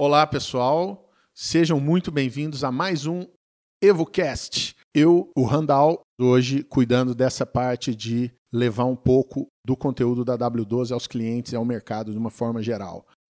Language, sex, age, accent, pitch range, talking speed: Portuguese, male, 50-69, Brazilian, 125-160 Hz, 150 wpm